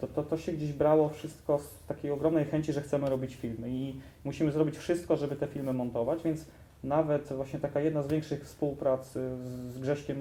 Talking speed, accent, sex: 195 wpm, native, male